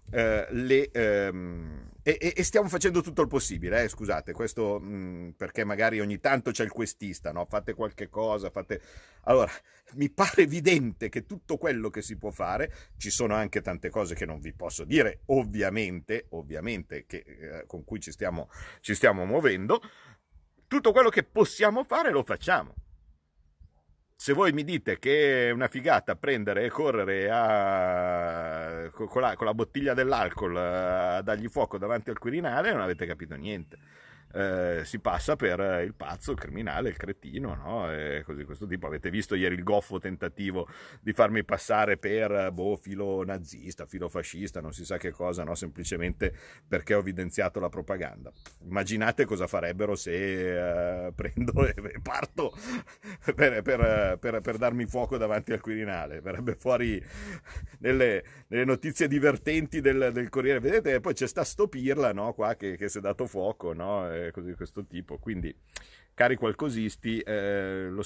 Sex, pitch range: male, 90-125 Hz